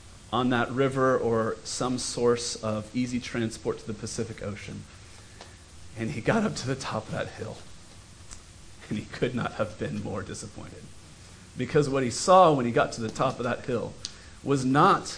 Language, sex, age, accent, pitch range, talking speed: English, male, 40-59, American, 105-135 Hz, 180 wpm